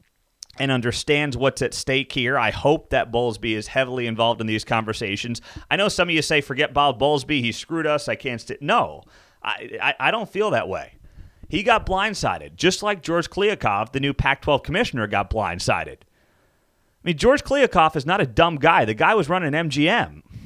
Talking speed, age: 195 wpm, 30-49